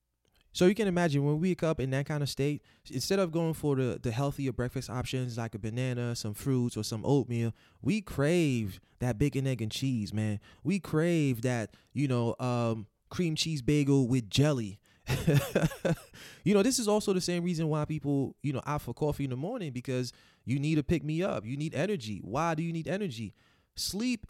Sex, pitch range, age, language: male, 125-160 Hz, 20-39, English